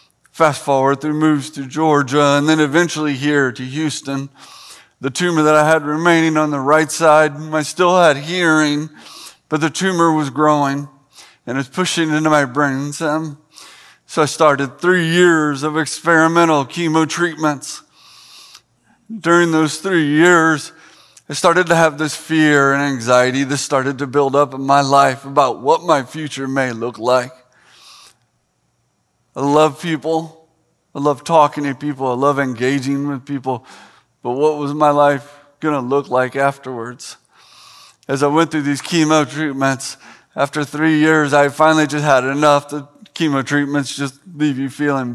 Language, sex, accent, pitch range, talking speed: English, male, American, 135-155 Hz, 155 wpm